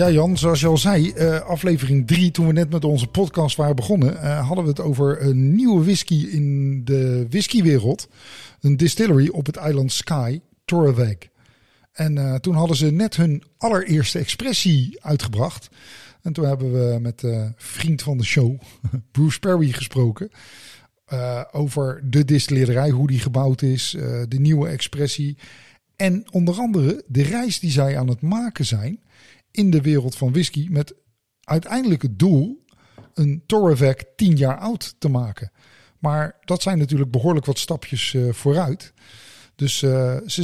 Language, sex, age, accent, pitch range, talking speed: Dutch, male, 50-69, Dutch, 130-165 Hz, 155 wpm